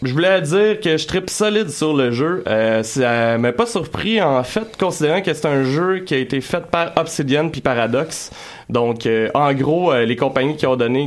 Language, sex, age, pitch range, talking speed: French, male, 30-49, 120-160 Hz, 220 wpm